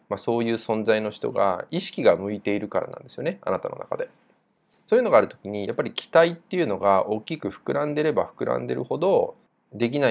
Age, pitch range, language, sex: 20-39, 100-165 Hz, Japanese, male